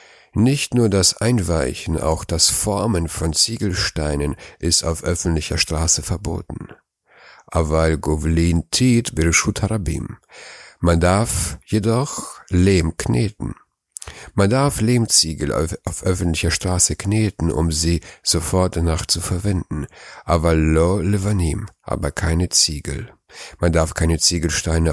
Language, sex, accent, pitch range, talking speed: German, male, German, 80-100 Hz, 100 wpm